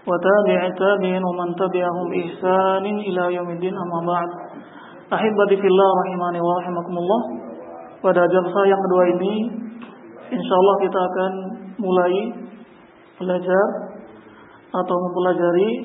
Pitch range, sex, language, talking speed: 180-215 Hz, male, Indonesian, 95 wpm